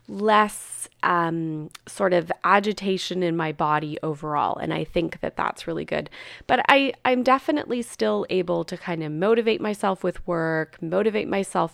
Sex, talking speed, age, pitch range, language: female, 155 wpm, 20-39, 155-185 Hz, English